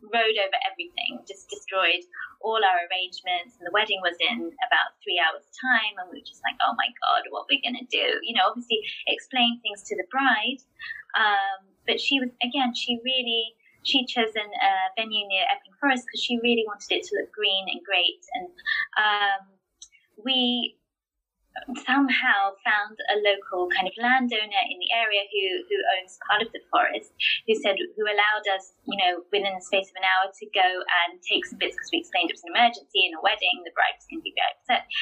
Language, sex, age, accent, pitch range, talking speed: English, female, 20-39, British, 205-295 Hz, 200 wpm